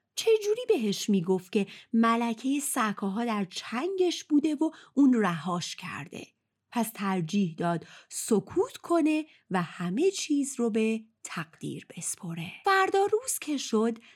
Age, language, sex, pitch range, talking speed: 30-49, Persian, female, 185-300 Hz, 125 wpm